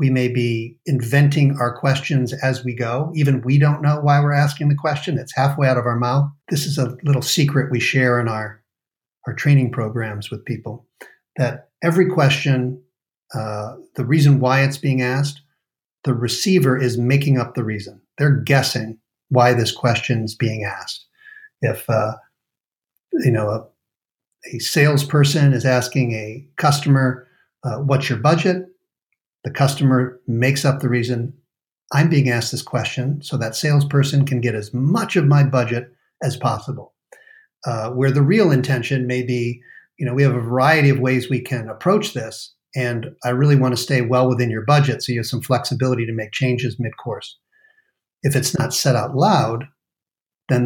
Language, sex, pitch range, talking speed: English, male, 120-145 Hz, 170 wpm